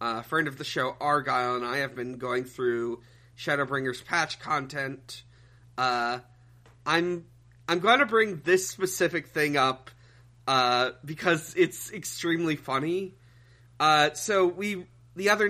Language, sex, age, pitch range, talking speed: English, male, 30-49, 125-175 Hz, 140 wpm